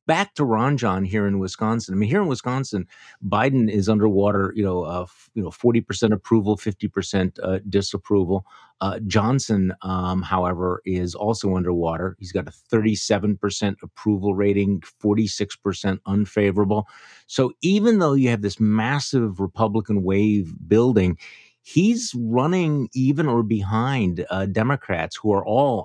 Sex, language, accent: male, English, American